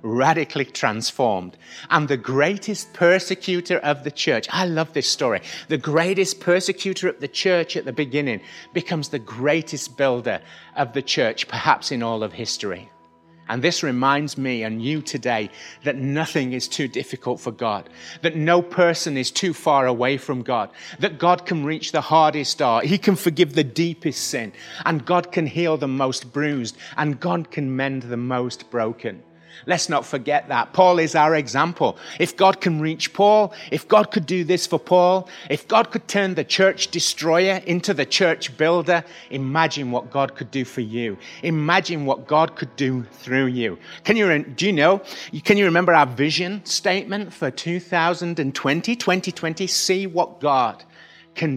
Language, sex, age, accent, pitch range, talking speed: English, male, 30-49, British, 130-175 Hz, 170 wpm